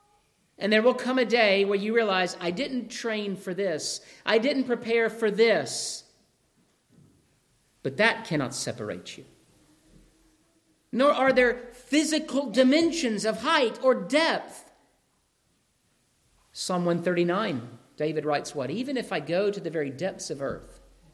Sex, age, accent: male, 50-69, American